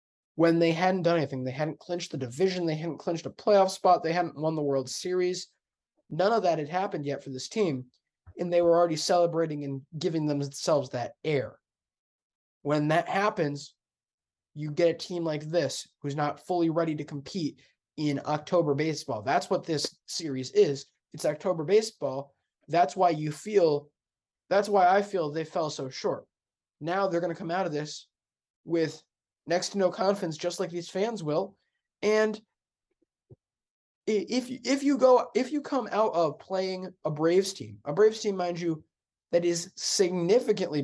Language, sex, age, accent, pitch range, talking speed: English, male, 20-39, American, 145-185 Hz, 175 wpm